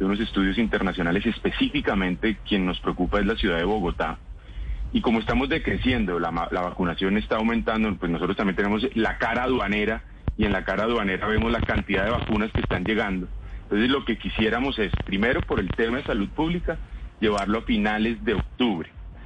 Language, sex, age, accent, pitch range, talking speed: Spanish, male, 30-49, Colombian, 100-125 Hz, 185 wpm